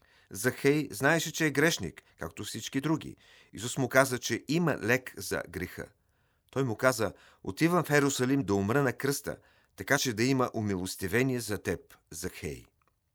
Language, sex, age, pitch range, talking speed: Bulgarian, male, 40-59, 95-130 Hz, 155 wpm